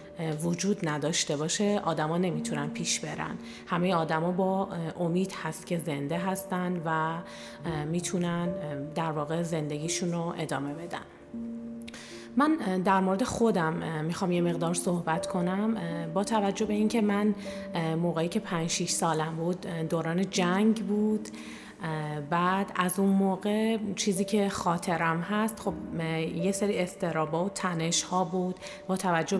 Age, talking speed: 30-49, 130 wpm